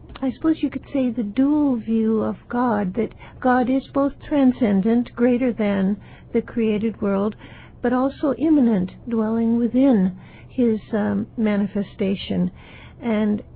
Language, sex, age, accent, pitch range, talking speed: English, female, 60-79, American, 215-260 Hz, 130 wpm